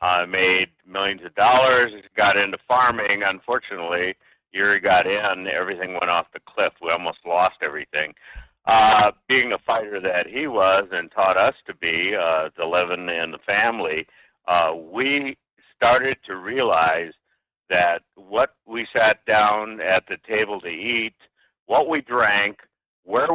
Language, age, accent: English, 60-79, American